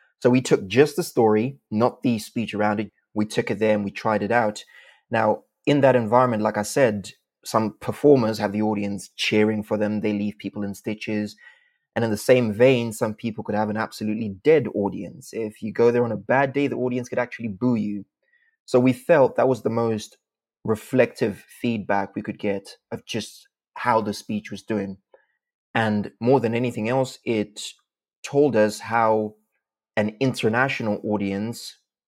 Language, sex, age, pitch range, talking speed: English, male, 20-39, 105-125 Hz, 185 wpm